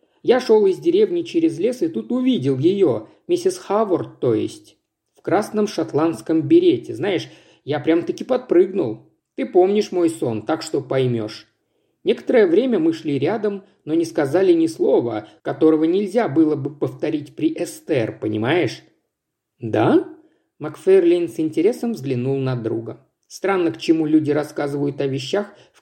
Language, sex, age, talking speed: Russian, male, 50-69, 145 wpm